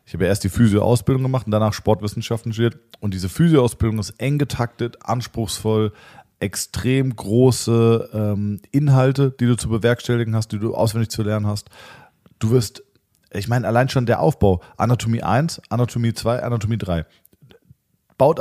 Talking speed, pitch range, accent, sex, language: 155 wpm, 105-130 Hz, German, male, German